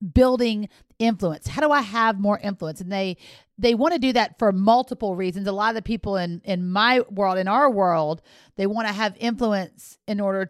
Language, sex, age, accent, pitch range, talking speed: English, female, 40-59, American, 190-240 Hz, 210 wpm